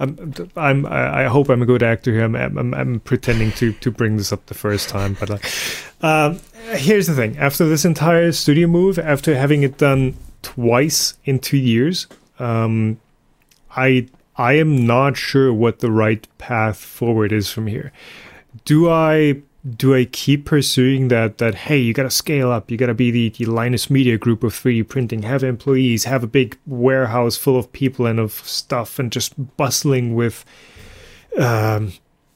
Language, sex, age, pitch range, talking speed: English, male, 30-49, 115-150 Hz, 180 wpm